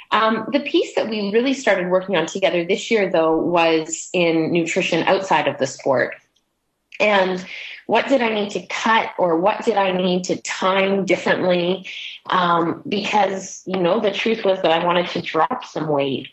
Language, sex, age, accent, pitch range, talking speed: English, female, 30-49, American, 165-205 Hz, 180 wpm